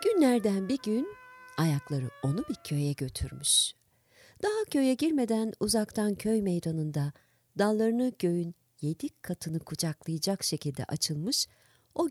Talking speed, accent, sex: 110 wpm, native, female